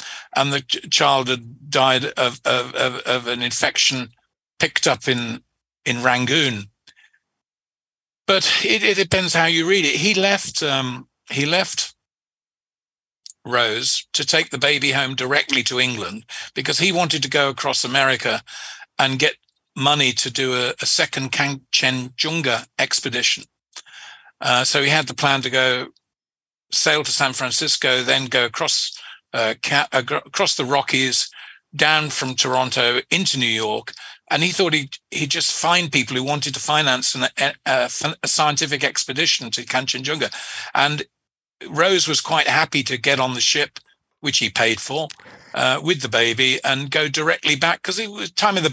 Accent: British